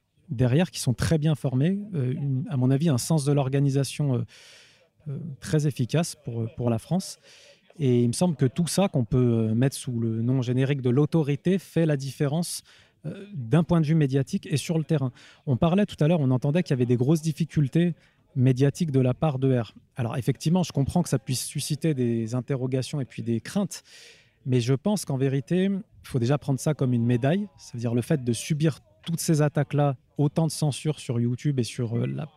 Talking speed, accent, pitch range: 210 wpm, French, 130-160 Hz